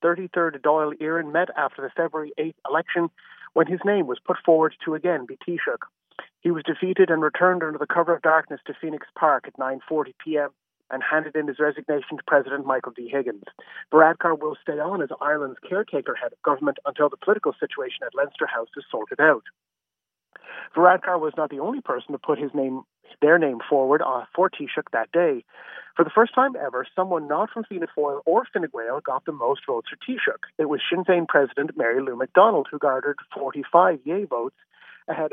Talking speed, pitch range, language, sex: 190 wpm, 150-195 Hz, English, male